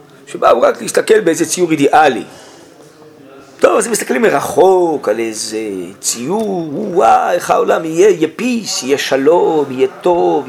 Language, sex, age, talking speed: Hebrew, male, 40-59, 135 wpm